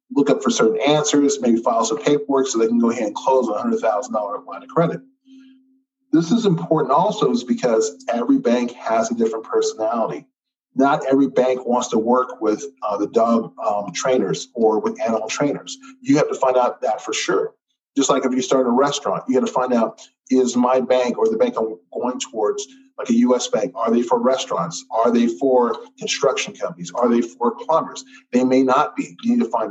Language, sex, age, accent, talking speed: English, male, 40-59, American, 205 wpm